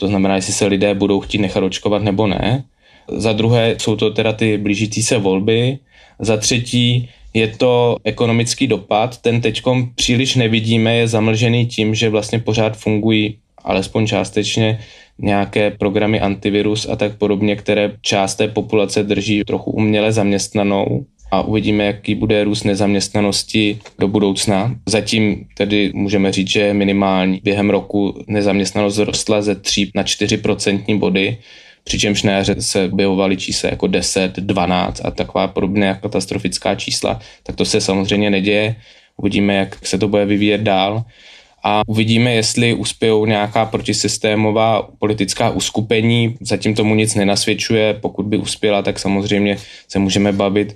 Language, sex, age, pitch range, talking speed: Czech, male, 20-39, 100-110 Hz, 145 wpm